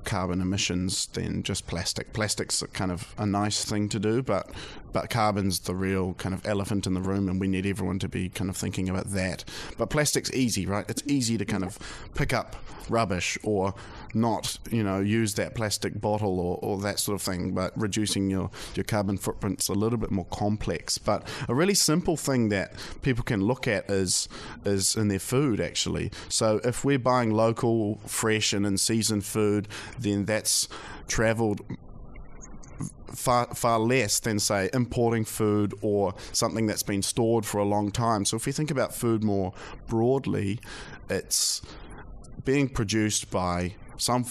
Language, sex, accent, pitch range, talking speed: English, male, Australian, 95-115 Hz, 175 wpm